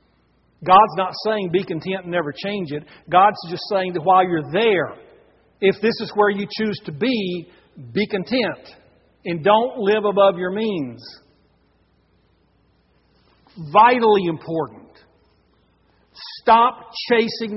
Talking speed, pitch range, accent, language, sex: 125 wpm, 140-195 Hz, American, English, male